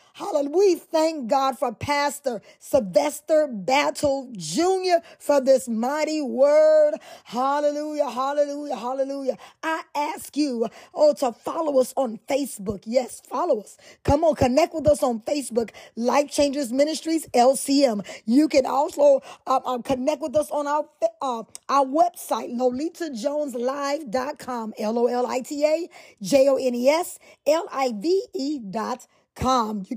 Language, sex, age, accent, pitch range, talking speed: English, female, 20-39, American, 245-300 Hz, 120 wpm